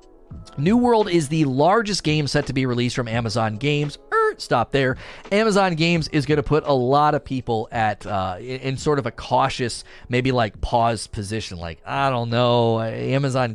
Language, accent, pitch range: English, American, 110-150 Hz